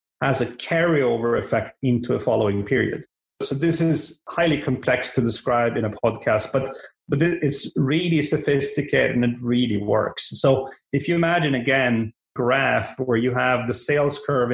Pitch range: 115-140 Hz